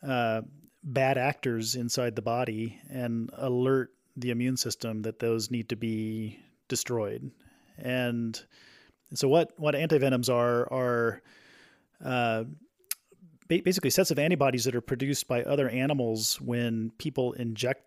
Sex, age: male, 40-59